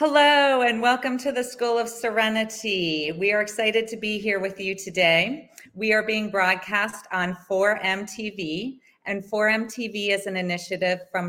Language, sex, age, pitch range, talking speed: English, female, 30-49, 175-225 Hz, 165 wpm